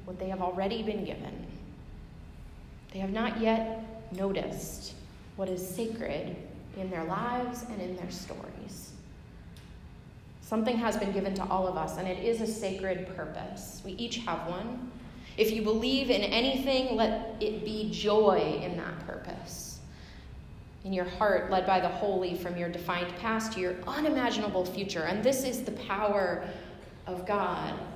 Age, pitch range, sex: 20-39, 180-225 Hz, female